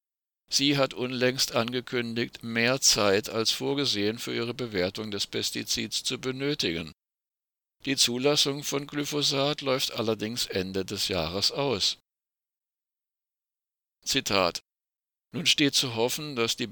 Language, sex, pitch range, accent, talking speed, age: German, male, 105-130 Hz, German, 115 wpm, 60-79